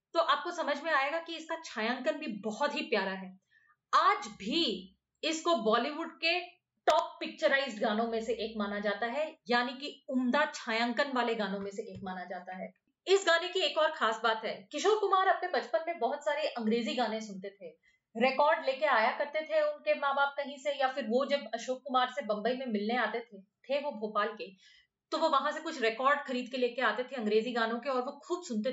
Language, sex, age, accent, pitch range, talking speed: Hindi, female, 30-49, native, 235-320 Hz, 210 wpm